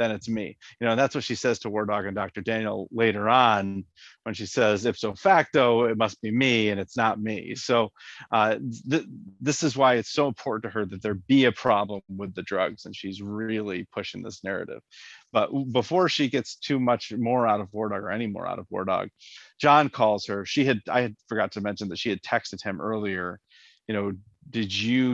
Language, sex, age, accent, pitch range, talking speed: English, male, 40-59, American, 100-125 Hz, 215 wpm